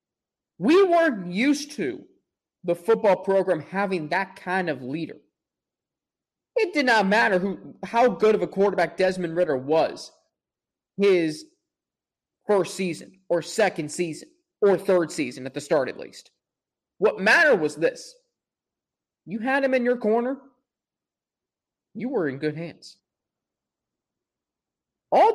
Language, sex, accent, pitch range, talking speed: English, male, American, 180-250 Hz, 130 wpm